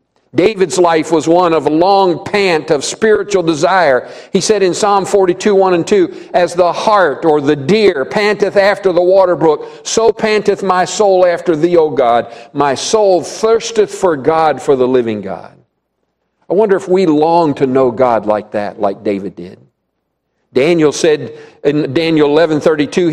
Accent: American